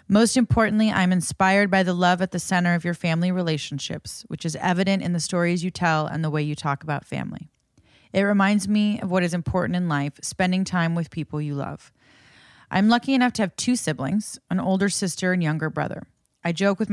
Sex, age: female, 30-49